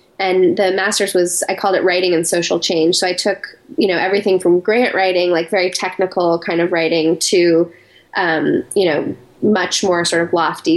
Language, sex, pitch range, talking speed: English, female, 170-190 Hz, 195 wpm